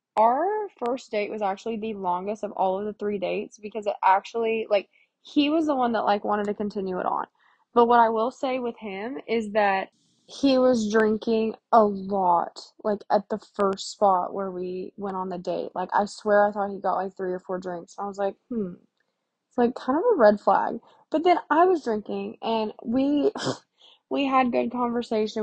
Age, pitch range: 20-39, 205-240 Hz